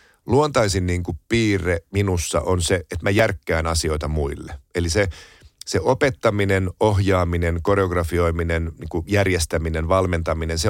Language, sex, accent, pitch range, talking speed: Finnish, male, native, 85-110 Hz, 125 wpm